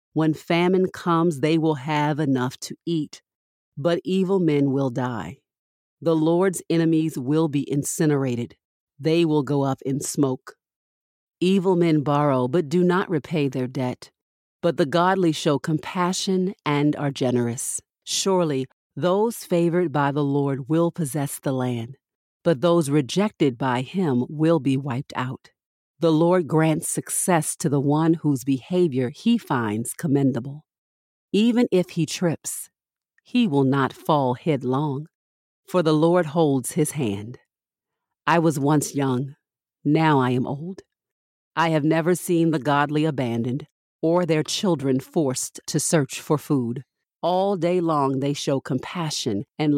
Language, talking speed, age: English, 145 wpm, 50-69